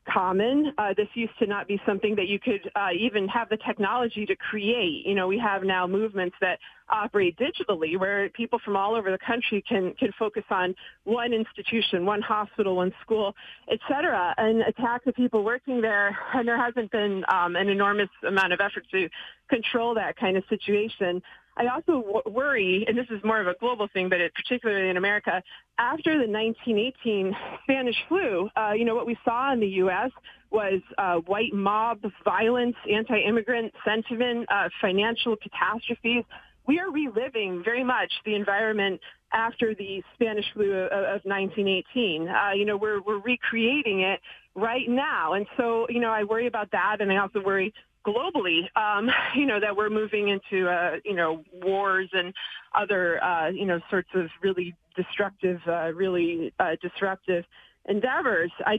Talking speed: 170 wpm